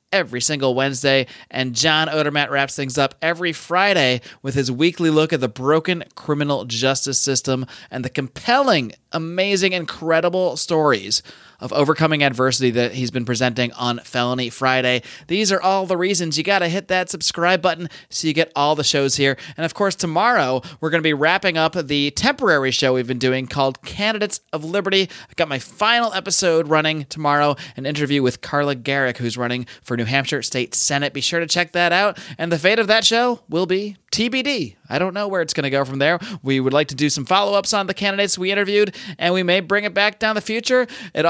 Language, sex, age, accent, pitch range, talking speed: English, male, 30-49, American, 135-190 Hz, 205 wpm